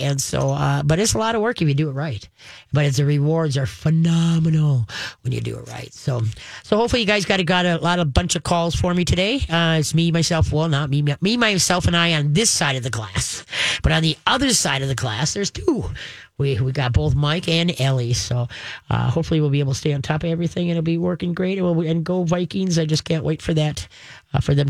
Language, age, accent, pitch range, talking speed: English, 40-59, American, 140-175 Hz, 260 wpm